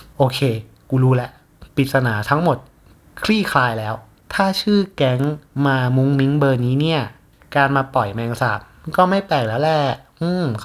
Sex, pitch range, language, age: male, 120-140 Hz, Thai, 30-49